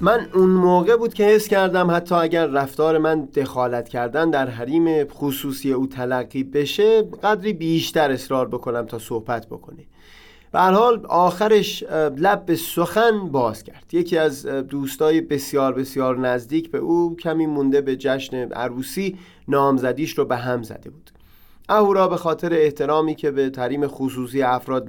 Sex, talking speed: male, 145 wpm